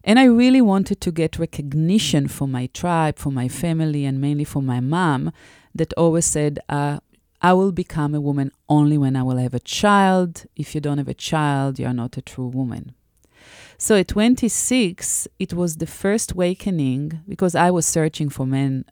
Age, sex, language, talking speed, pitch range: 30-49, female, English, 190 wpm, 135-185 Hz